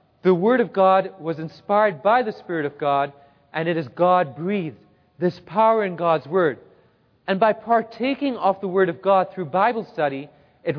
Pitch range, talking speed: 160-210 Hz, 180 wpm